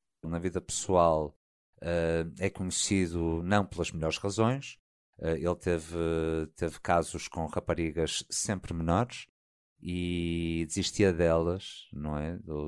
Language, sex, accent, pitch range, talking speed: Portuguese, male, Portuguese, 85-105 Hz, 100 wpm